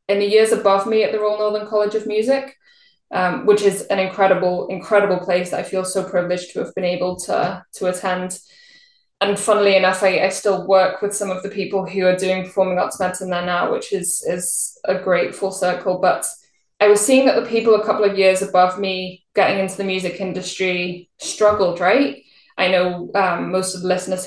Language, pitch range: English, 180-205 Hz